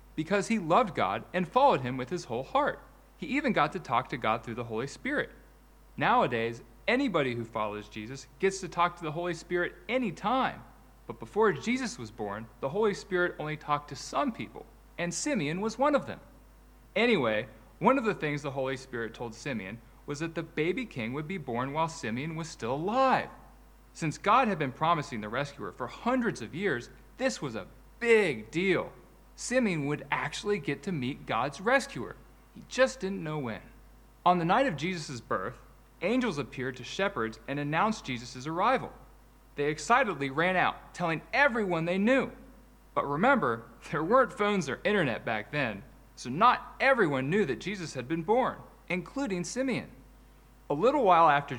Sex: male